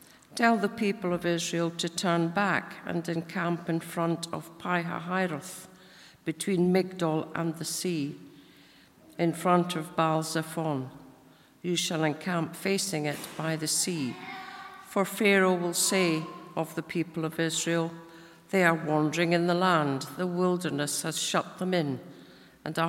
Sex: female